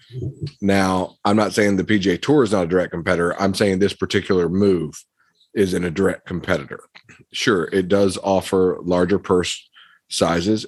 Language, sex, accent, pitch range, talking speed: English, male, American, 90-105 Hz, 165 wpm